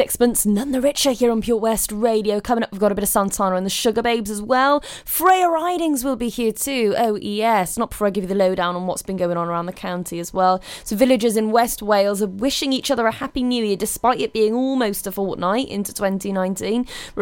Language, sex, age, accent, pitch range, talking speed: English, female, 20-39, British, 190-240 Hz, 245 wpm